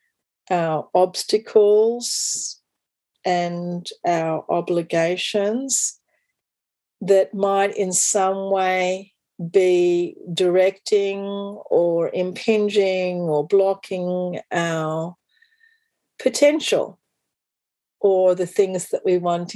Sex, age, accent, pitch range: female, 40-59, Australian, 170-205 Hz